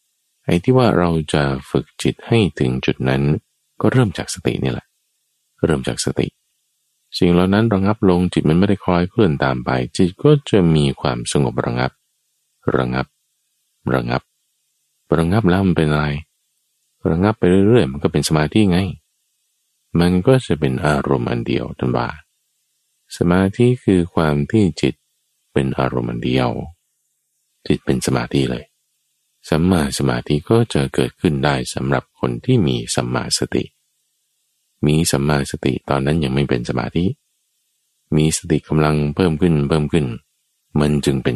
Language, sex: Thai, male